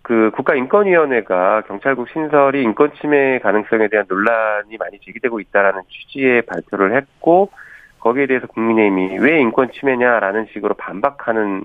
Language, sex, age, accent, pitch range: Korean, male, 40-59, native, 100-155 Hz